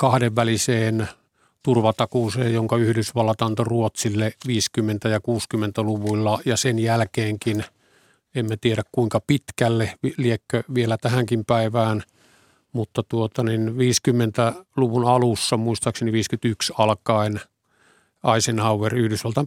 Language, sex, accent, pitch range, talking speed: Finnish, male, native, 110-120 Hz, 90 wpm